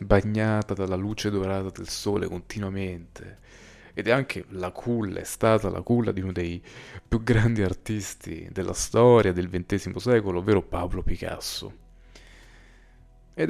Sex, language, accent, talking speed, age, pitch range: male, Italian, native, 140 wpm, 30-49, 95-115 Hz